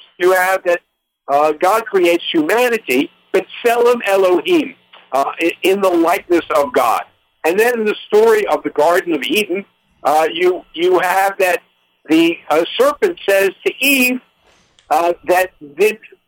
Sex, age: male, 60-79